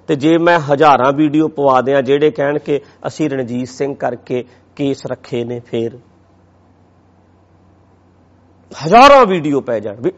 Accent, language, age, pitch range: Indian, English, 50-69, 120-165 Hz